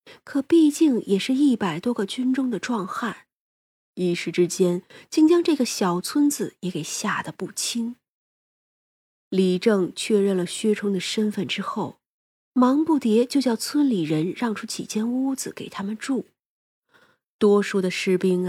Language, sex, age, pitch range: Chinese, female, 30-49, 180-250 Hz